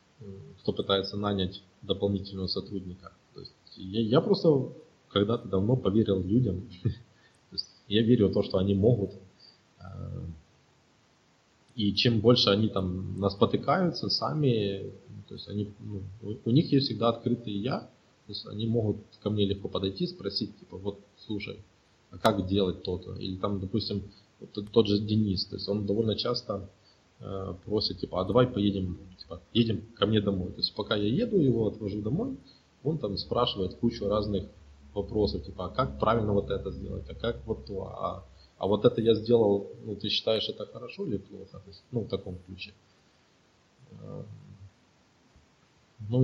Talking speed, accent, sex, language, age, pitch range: 145 wpm, native, male, Russian, 20-39, 95-115 Hz